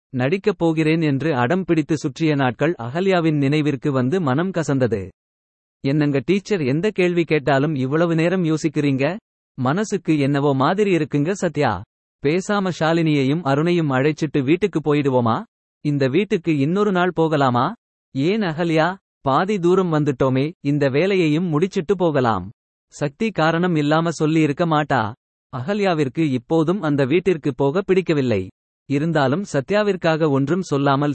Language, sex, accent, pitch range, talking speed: Tamil, male, native, 140-175 Hz, 110 wpm